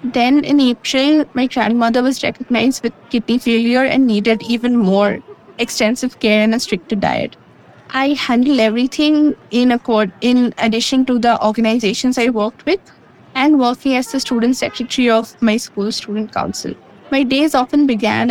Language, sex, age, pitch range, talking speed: English, female, 20-39, 230-280 Hz, 155 wpm